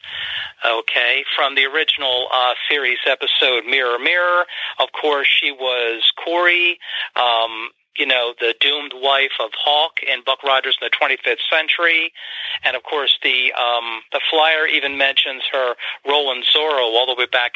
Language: English